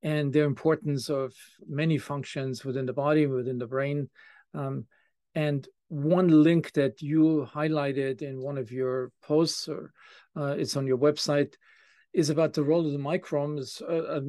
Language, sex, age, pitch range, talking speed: English, male, 50-69, 135-160 Hz, 155 wpm